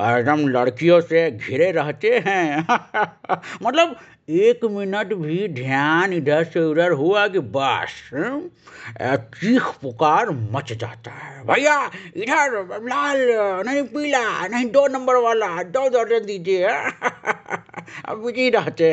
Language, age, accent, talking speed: Hindi, 50-69, native, 115 wpm